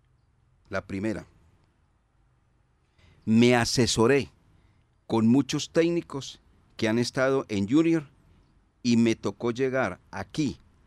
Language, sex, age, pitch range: Spanish, male, 50-69, 95-120 Hz